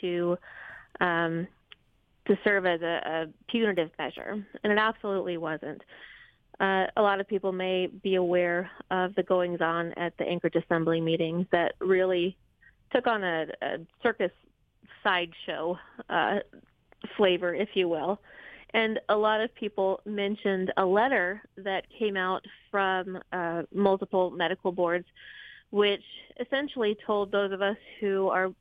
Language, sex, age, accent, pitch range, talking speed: English, female, 30-49, American, 185-205 Hz, 140 wpm